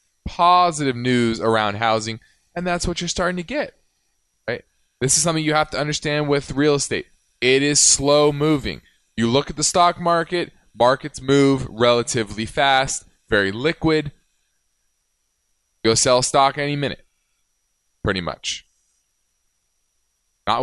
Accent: American